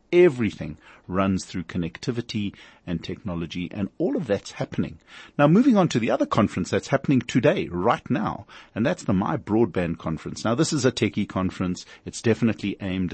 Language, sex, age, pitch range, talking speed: English, male, 50-69, 90-120 Hz, 175 wpm